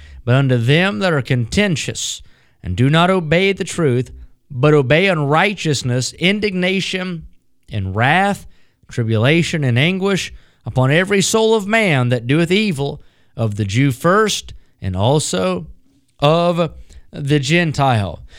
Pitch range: 130-170 Hz